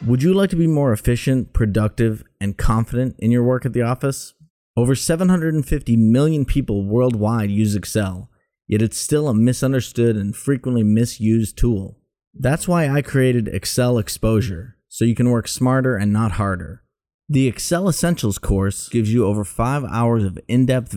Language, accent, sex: English, American, male